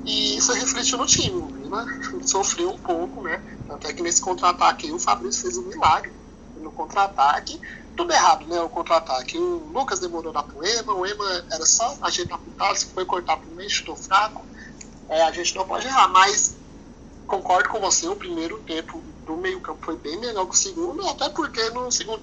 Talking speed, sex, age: 195 wpm, male, 30-49